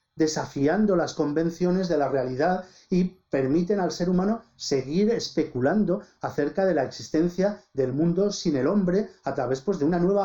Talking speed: 165 wpm